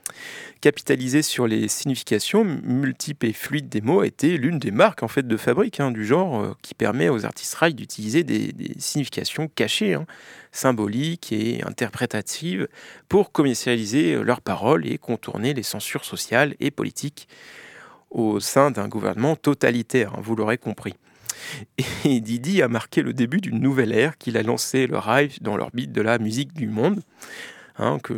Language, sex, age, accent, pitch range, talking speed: French, male, 40-59, French, 110-145 Hz, 165 wpm